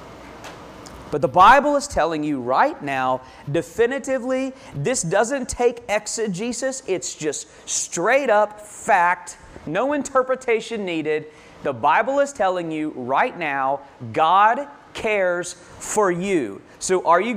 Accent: American